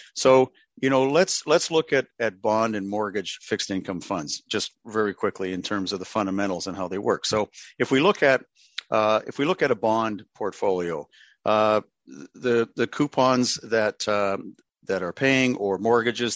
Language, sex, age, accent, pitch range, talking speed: English, male, 50-69, American, 100-120 Hz, 185 wpm